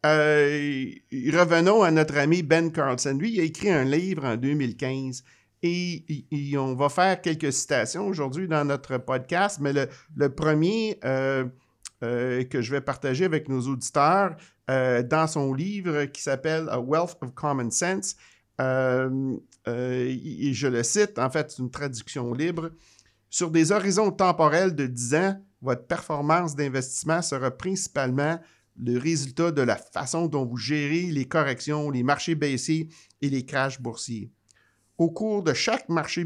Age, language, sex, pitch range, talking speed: 50-69, French, male, 130-170 Hz, 160 wpm